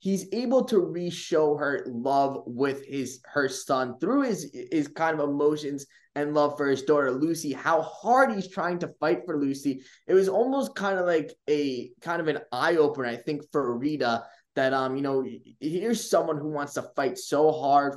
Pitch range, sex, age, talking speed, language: 135-160 Hz, male, 20-39, 195 wpm, English